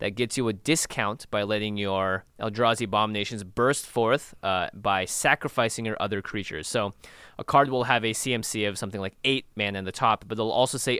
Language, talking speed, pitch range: English, 200 wpm, 100-130 Hz